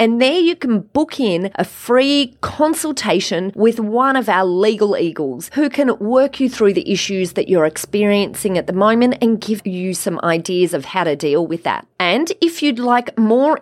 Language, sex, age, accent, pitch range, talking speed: English, female, 30-49, Australian, 185-270 Hz, 195 wpm